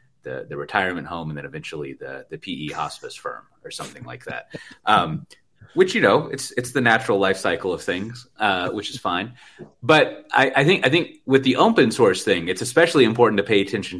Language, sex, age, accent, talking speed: English, male, 30-49, American, 210 wpm